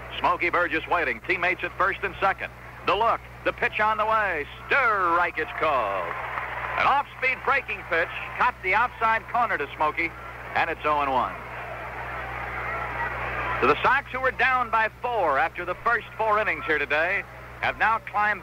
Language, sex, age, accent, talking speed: English, male, 60-79, American, 155 wpm